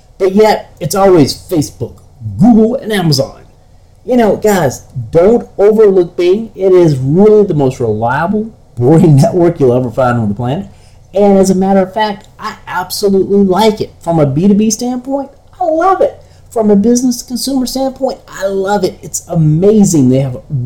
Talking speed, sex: 165 wpm, male